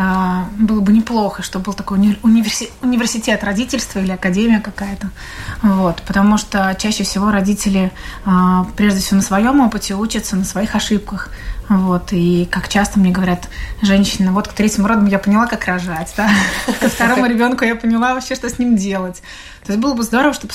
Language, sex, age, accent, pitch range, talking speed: Russian, female, 20-39, native, 195-220 Hz, 170 wpm